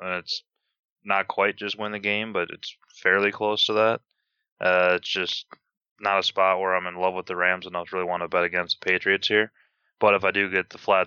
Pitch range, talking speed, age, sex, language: 90-100 Hz, 245 wpm, 20-39, male, English